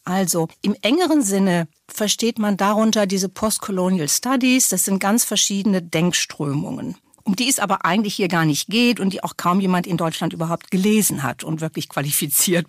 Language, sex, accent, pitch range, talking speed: German, female, German, 190-245 Hz, 175 wpm